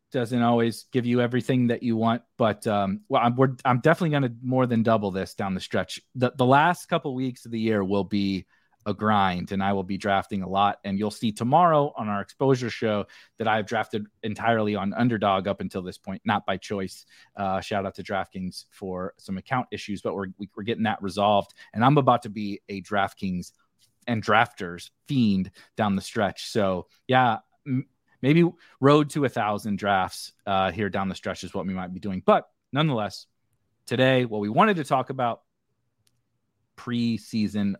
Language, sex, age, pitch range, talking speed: English, male, 30-49, 100-130 Hz, 200 wpm